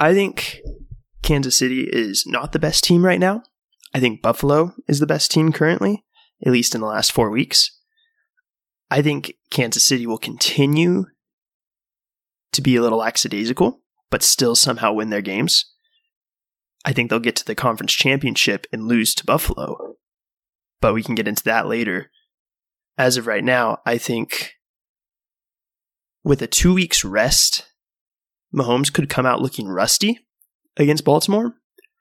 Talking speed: 150 wpm